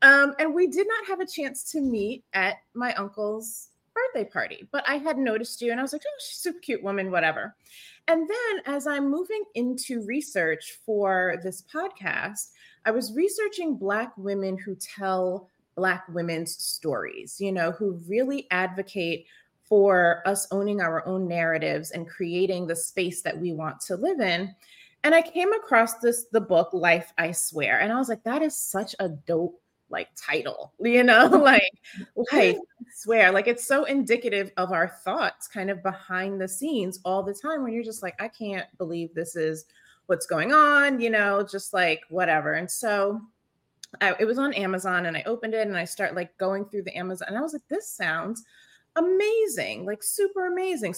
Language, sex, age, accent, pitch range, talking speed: English, female, 20-39, American, 185-290 Hz, 190 wpm